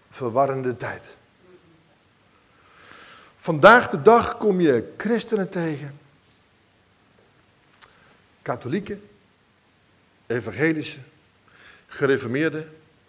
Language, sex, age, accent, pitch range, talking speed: Dutch, male, 50-69, Dutch, 145-205 Hz, 55 wpm